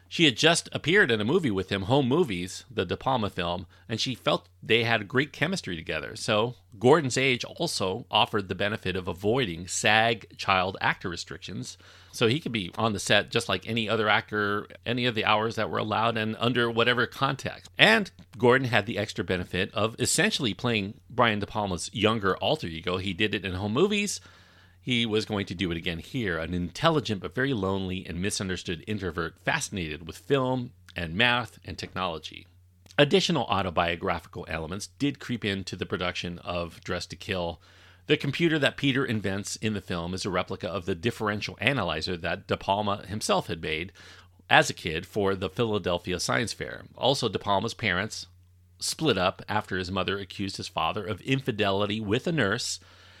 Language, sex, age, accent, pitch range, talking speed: English, male, 40-59, American, 90-115 Hz, 180 wpm